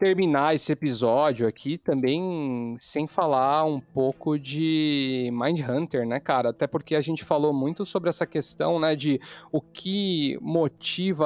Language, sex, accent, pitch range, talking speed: Portuguese, male, Brazilian, 130-170 Hz, 145 wpm